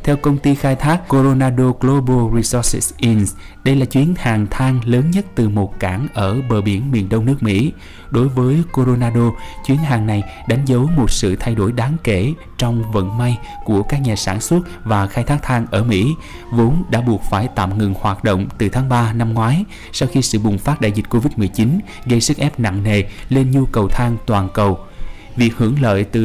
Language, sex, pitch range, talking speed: Vietnamese, male, 105-135 Hz, 205 wpm